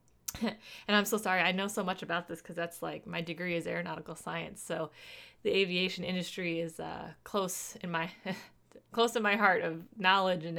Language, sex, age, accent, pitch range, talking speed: English, female, 20-39, American, 165-190 Hz, 195 wpm